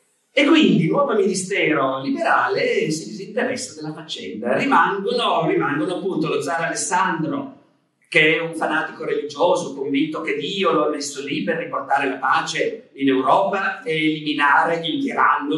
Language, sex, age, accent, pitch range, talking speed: Italian, male, 40-59, native, 160-250 Hz, 155 wpm